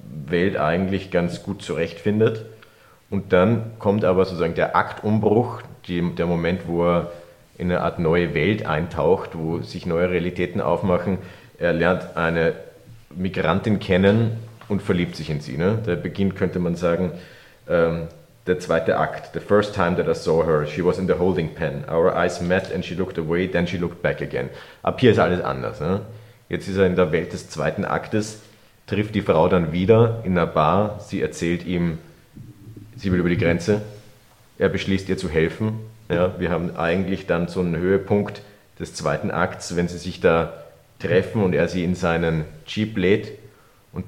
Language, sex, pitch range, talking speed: German, male, 85-105 Hz, 180 wpm